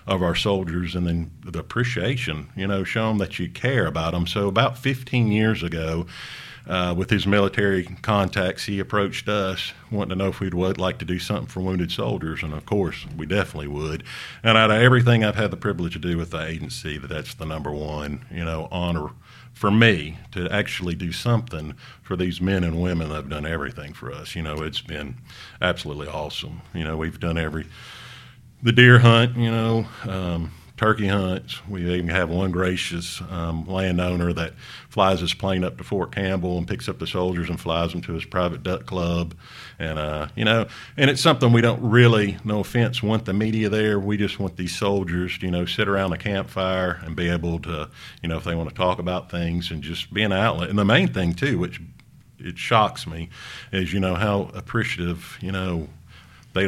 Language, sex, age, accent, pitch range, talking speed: English, male, 50-69, American, 85-105 Hz, 205 wpm